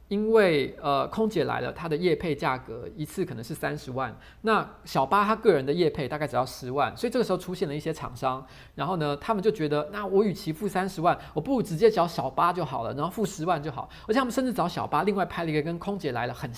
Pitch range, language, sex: 130-190 Hz, Chinese, male